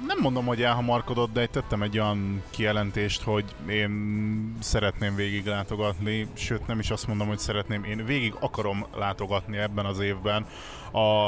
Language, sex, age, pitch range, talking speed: Hungarian, male, 20-39, 105-115 Hz, 155 wpm